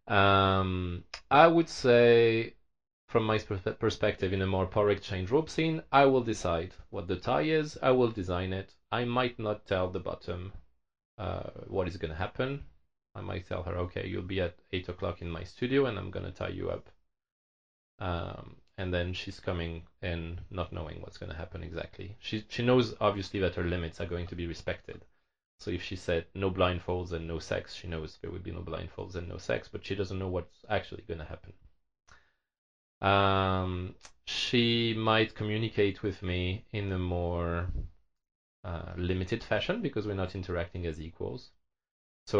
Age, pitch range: 30-49, 85-105 Hz